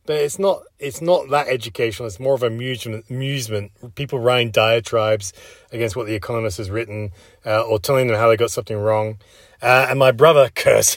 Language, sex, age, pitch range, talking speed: English, male, 30-49, 105-130 Hz, 190 wpm